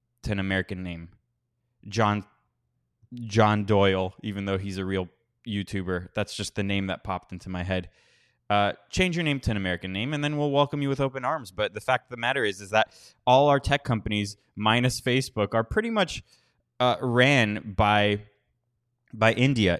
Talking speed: 180 wpm